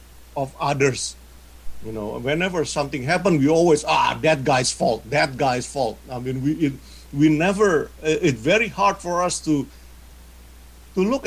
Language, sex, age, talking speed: English, male, 50-69, 165 wpm